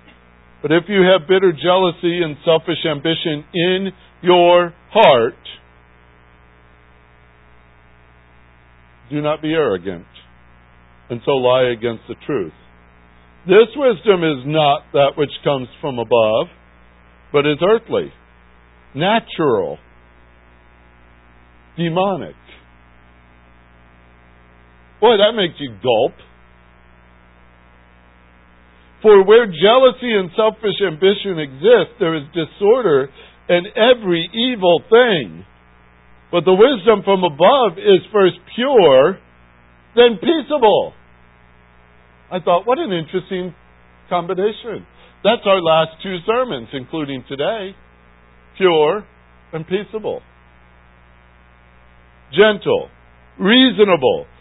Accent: American